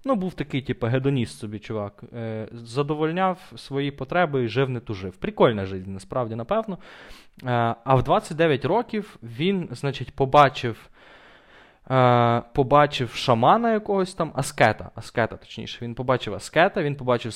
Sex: male